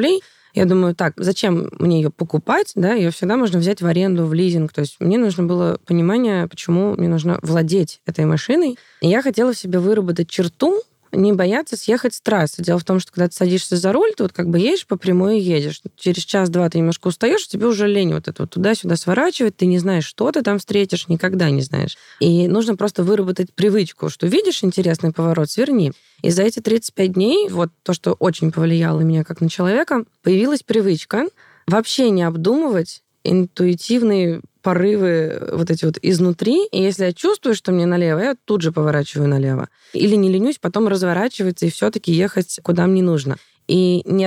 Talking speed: 190 wpm